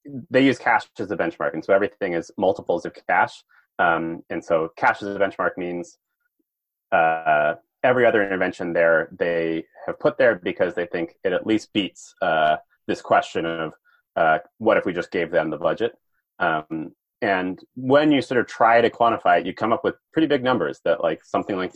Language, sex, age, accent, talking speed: English, male, 30-49, American, 195 wpm